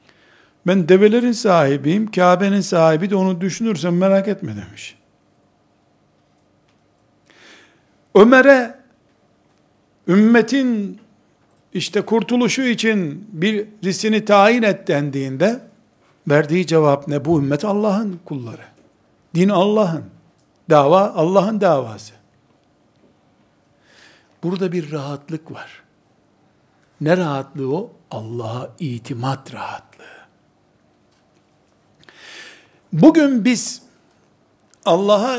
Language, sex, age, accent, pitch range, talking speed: Turkish, male, 60-79, native, 150-215 Hz, 75 wpm